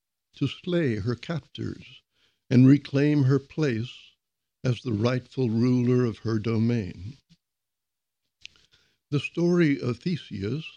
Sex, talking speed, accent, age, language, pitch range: male, 105 wpm, American, 60-79, English, 110-140 Hz